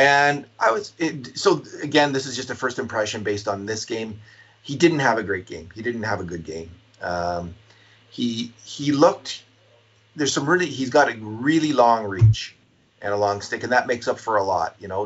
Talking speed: 225 wpm